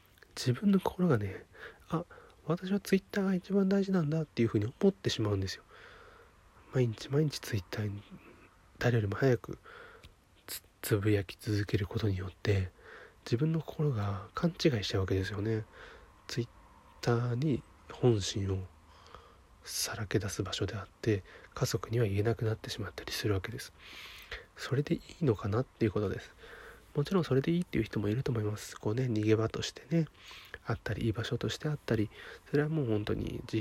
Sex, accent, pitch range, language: male, native, 105-150 Hz, Japanese